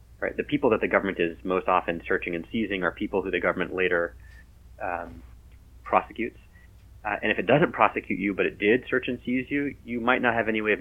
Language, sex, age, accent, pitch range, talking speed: English, male, 30-49, American, 85-100 Hz, 230 wpm